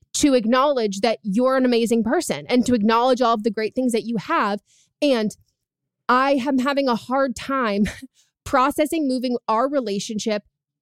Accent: American